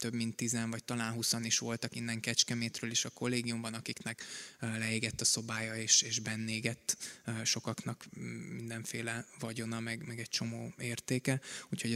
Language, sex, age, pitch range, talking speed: Hungarian, male, 20-39, 115-125 Hz, 145 wpm